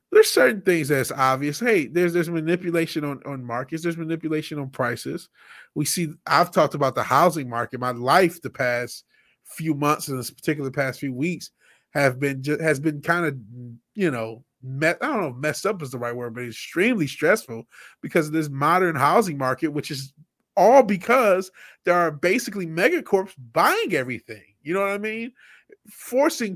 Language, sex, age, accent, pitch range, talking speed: English, male, 30-49, American, 135-180 Hz, 185 wpm